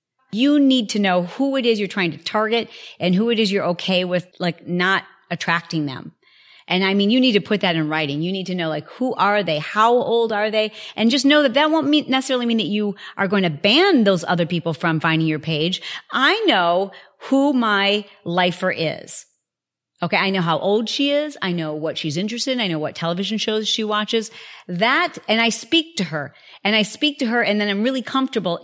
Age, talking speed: 40-59, 225 wpm